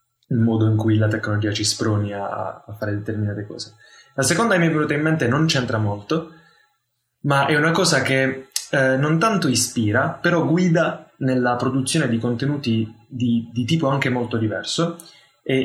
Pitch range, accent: 110-150 Hz, native